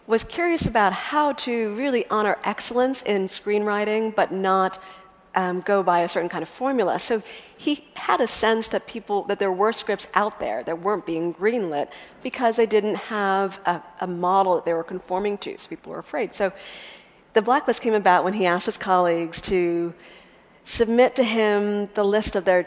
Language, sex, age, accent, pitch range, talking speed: English, female, 50-69, American, 175-220 Hz, 190 wpm